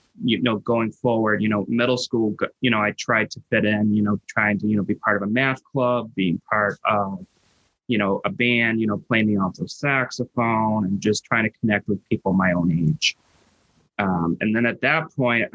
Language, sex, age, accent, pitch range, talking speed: English, male, 20-39, American, 100-120 Hz, 215 wpm